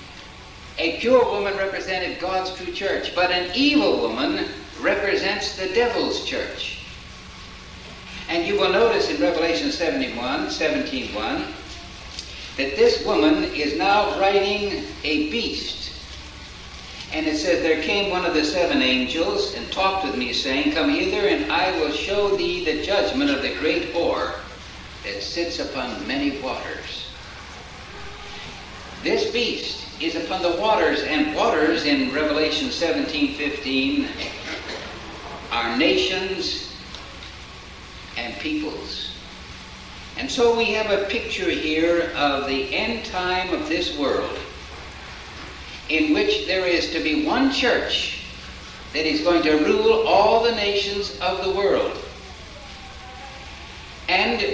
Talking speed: 125 wpm